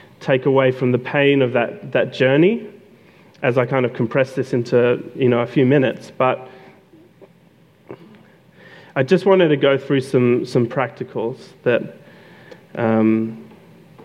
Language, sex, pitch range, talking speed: English, male, 125-170 Hz, 140 wpm